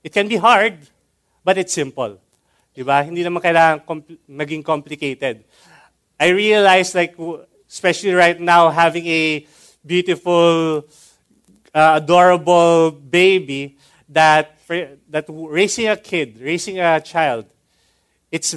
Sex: male